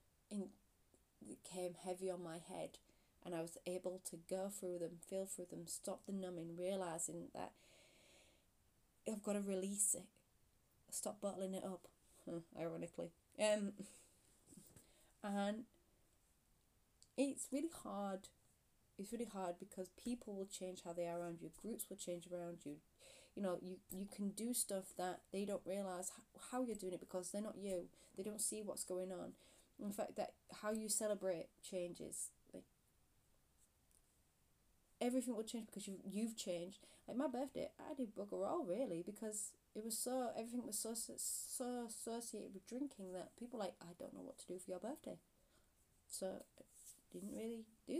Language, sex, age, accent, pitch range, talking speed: English, female, 30-49, British, 185-230 Hz, 165 wpm